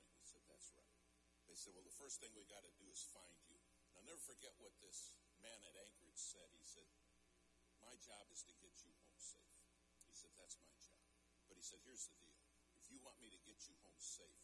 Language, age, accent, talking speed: English, 60-79, American, 220 wpm